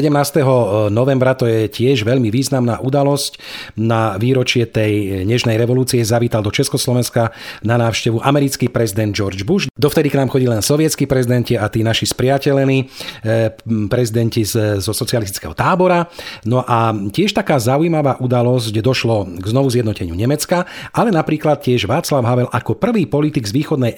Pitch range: 110-135 Hz